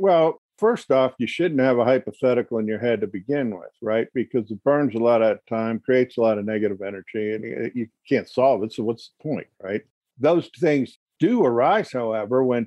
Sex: male